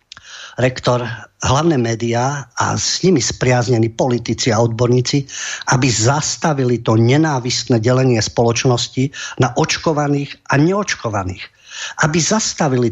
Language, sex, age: English, male, 50-69